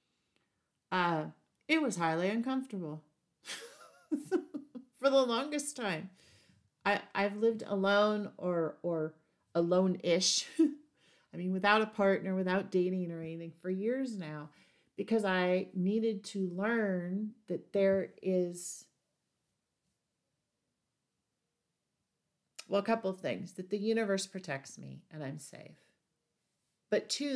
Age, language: 40-59, English